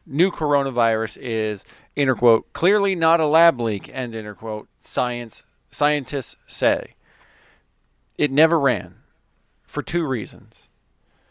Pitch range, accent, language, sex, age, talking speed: 110-135 Hz, American, English, male, 40-59, 100 wpm